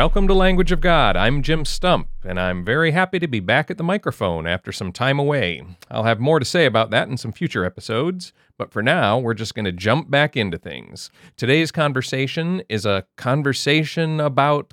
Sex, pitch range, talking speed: male, 110-155 Hz, 205 wpm